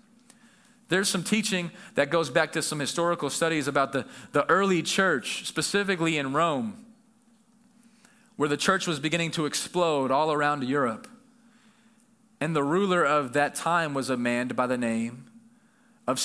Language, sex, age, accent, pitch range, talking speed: English, male, 30-49, American, 155-225 Hz, 150 wpm